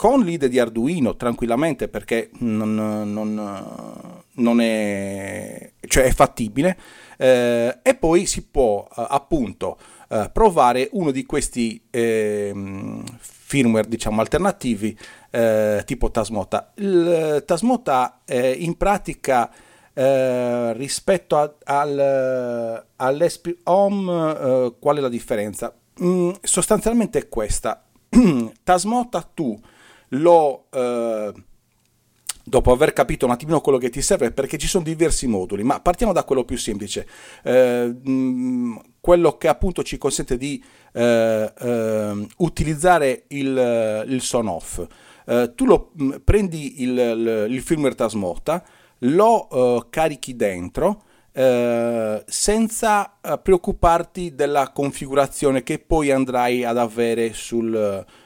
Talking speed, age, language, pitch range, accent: 115 wpm, 40-59, Italian, 115-165 Hz, native